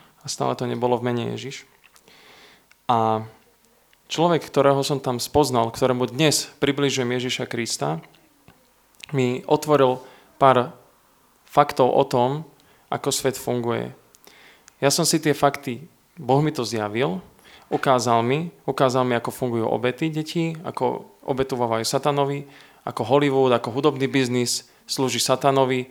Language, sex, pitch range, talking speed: Slovak, male, 125-140 Hz, 125 wpm